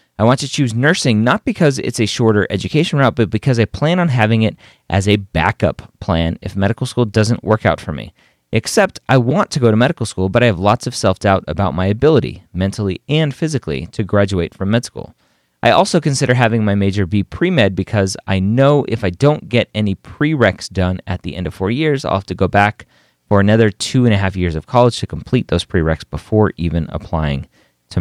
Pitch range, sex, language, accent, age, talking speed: 95-135 Hz, male, English, American, 30-49, 220 wpm